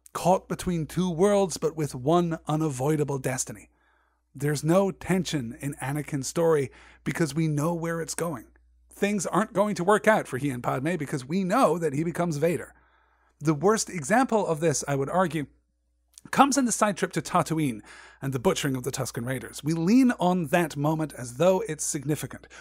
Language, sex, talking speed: English, male, 185 wpm